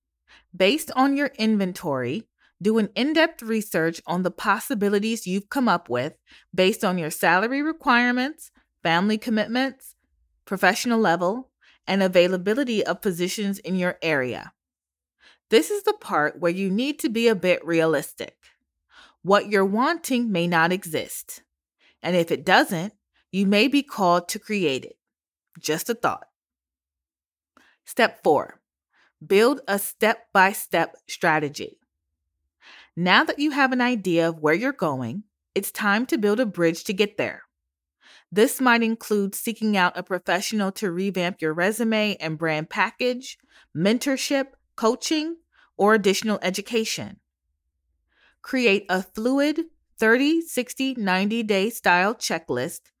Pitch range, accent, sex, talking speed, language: 175-235 Hz, American, female, 130 wpm, English